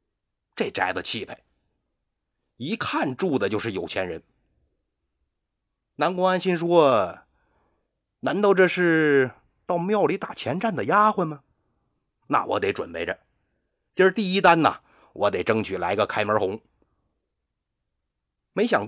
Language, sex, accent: Chinese, male, native